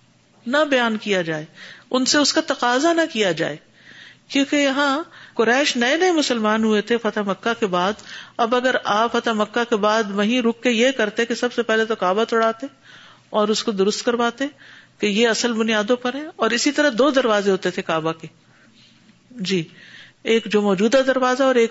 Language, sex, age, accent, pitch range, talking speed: English, female, 50-69, Indian, 195-245 Hz, 155 wpm